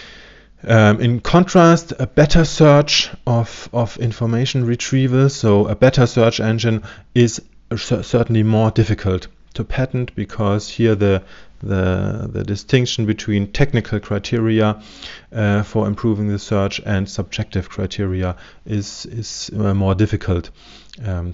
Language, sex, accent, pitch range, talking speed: English, male, German, 100-120 Hz, 125 wpm